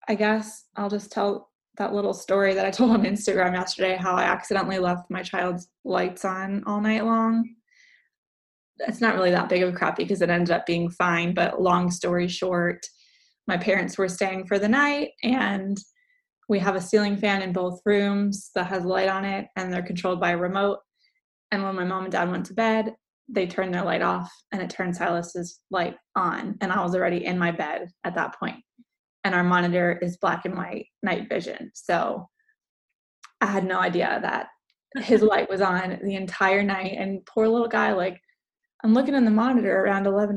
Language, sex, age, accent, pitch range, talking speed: English, female, 20-39, American, 185-220 Hz, 200 wpm